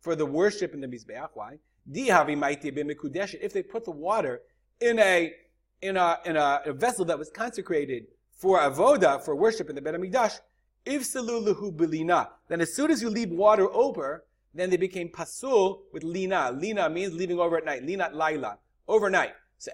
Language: English